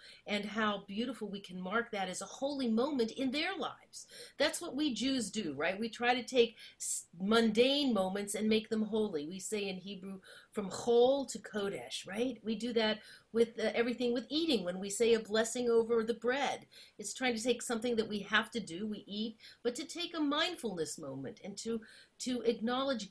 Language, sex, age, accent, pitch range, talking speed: English, female, 40-59, American, 190-250 Hz, 200 wpm